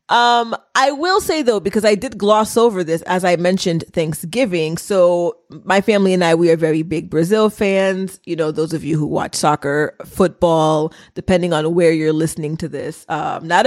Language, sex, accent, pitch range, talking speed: English, female, American, 165-200 Hz, 195 wpm